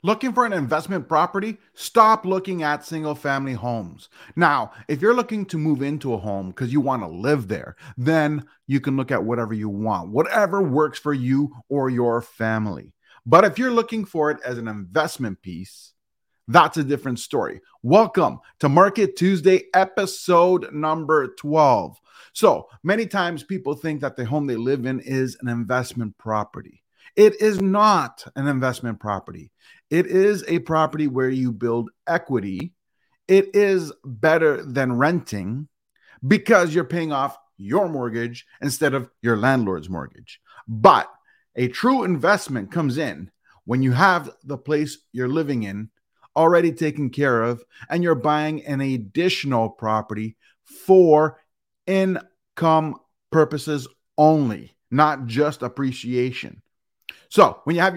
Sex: male